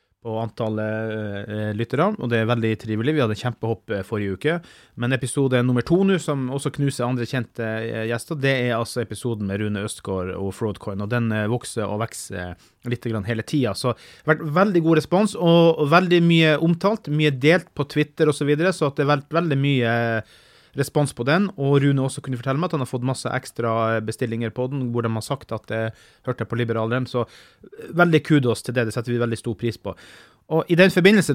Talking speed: 220 wpm